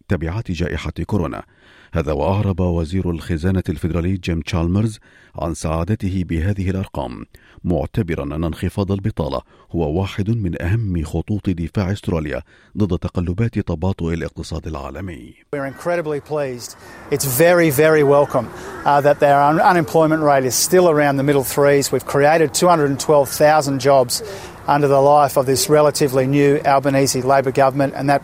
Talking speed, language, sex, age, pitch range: 135 wpm, Arabic, male, 50-69, 85-115 Hz